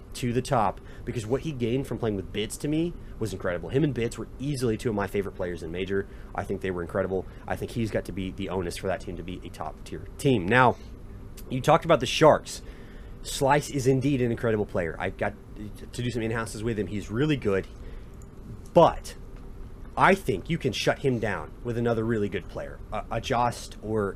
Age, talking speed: 30-49, 220 wpm